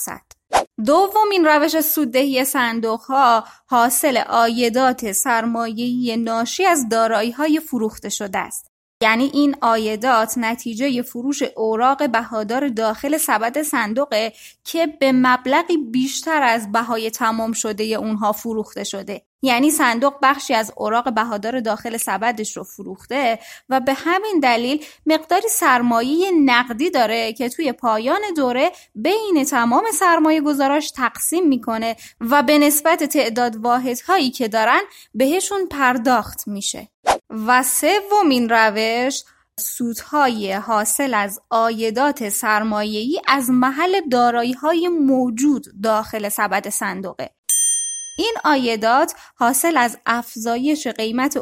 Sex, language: female, Persian